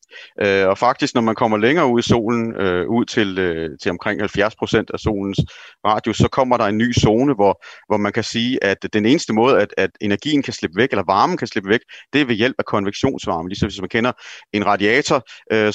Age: 40-59